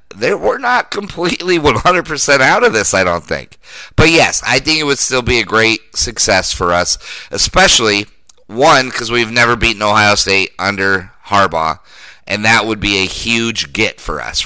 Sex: male